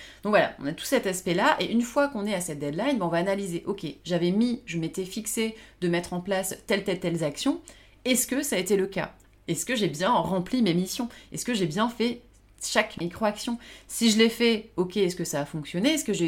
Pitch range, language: 170-230 Hz, French